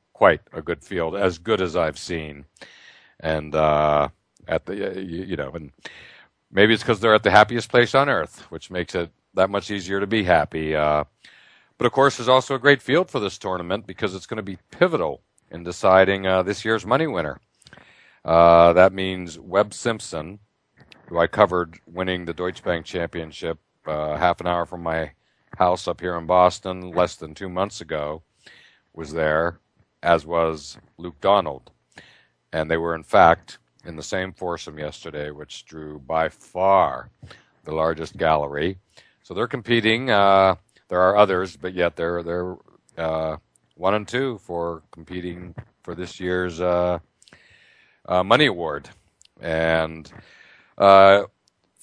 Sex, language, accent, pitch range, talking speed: male, English, American, 80-100 Hz, 160 wpm